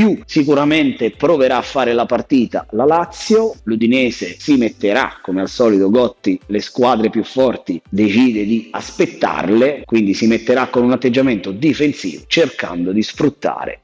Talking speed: 140 wpm